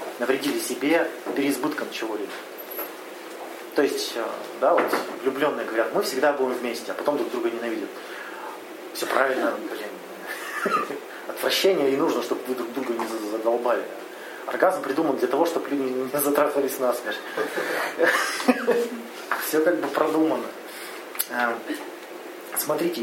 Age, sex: 30-49, male